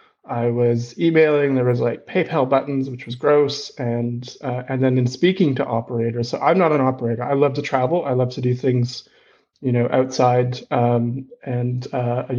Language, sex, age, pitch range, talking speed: English, male, 30-49, 125-140 Hz, 190 wpm